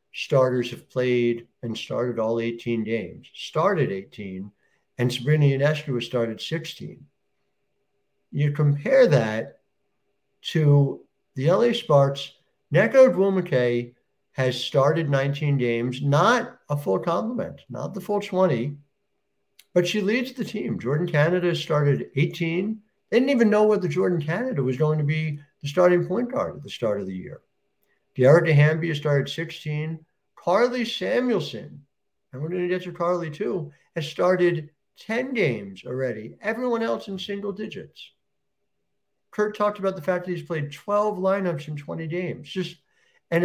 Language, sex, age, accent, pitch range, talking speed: English, male, 60-79, American, 140-195 Hz, 145 wpm